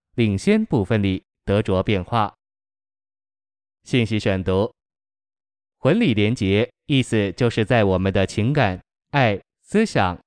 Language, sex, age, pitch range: Chinese, male, 20-39, 100-120 Hz